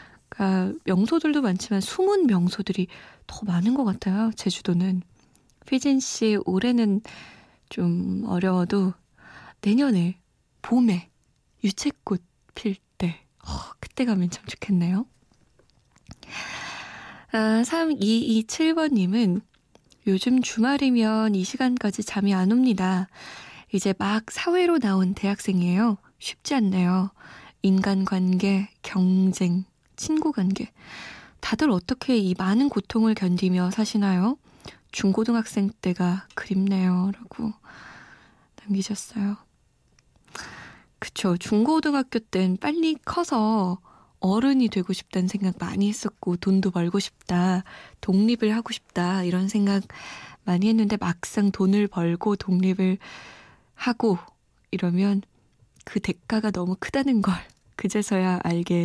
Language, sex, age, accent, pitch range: Korean, female, 20-39, native, 185-225 Hz